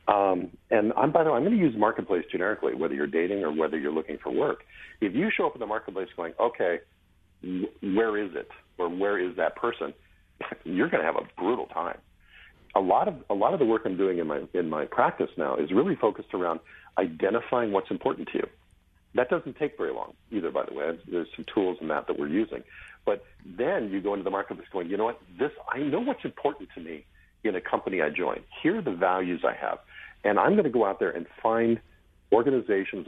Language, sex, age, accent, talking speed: English, male, 50-69, American, 230 wpm